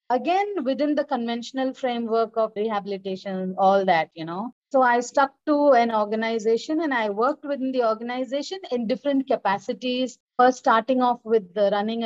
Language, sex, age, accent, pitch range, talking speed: English, female, 30-49, Indian, 215-270 Hz, 155 wpm